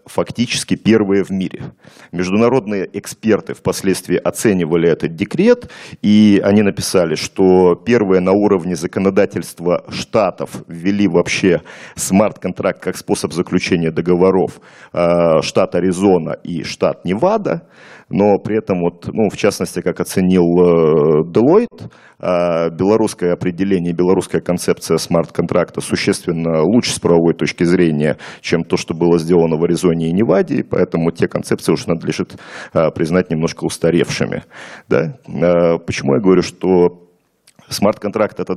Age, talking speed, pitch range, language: 40-59, 120 wpm, 85-100 Hz, English